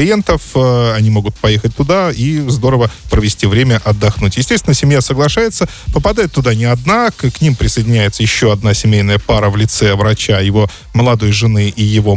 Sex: male